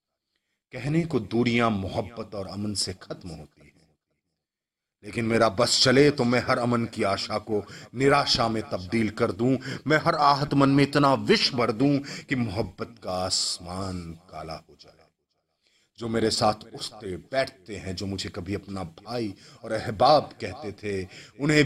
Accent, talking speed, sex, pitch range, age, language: native, 160 wpm, male, 95-120 Hz, 30-49, Hindi